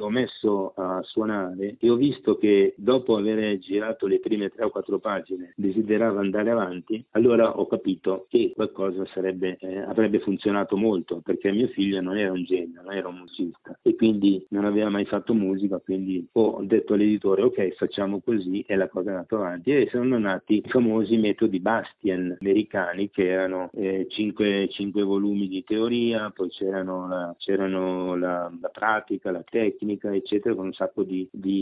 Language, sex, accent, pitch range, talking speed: Italian, male, native, 95-115 Hz, 170 wpm